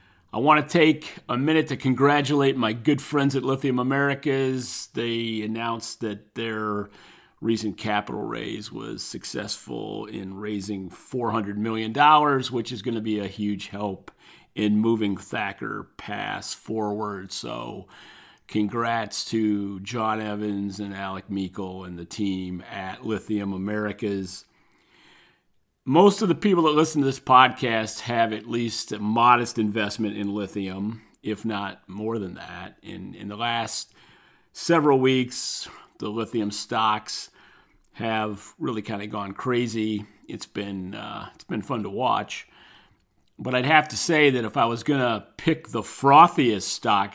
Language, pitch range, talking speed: English, 105-125 Hz, 145 wpm